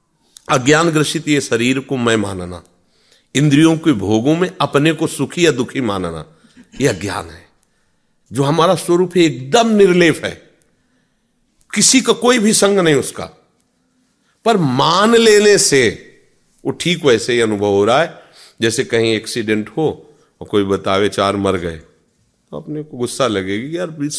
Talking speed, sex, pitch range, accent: 155 wpm, male, 110-165 Hz, native